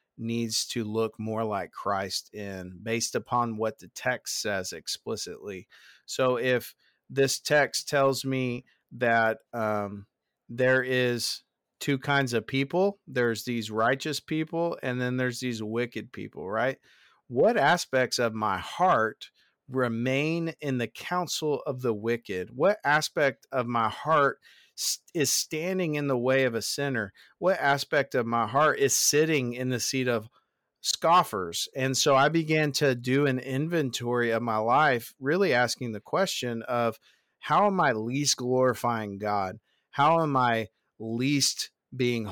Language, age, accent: English, 40-59, American